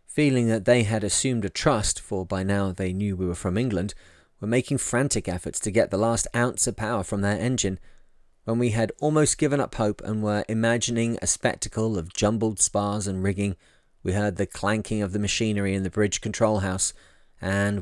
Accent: British